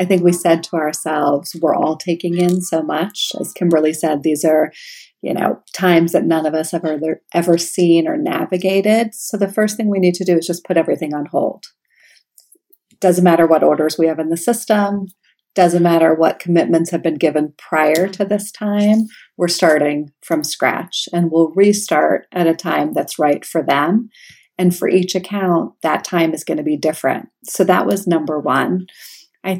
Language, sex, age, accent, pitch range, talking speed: English, female, 40-59, American, 160-195 Hz, 195 wpm